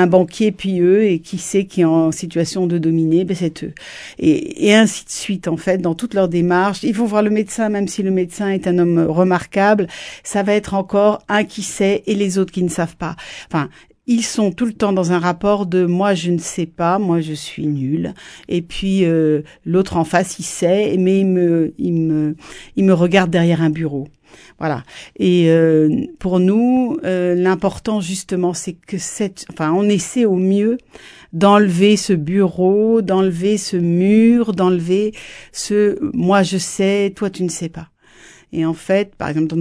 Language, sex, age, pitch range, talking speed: French, female, 50-69, 170-205 Hz, 200 wpm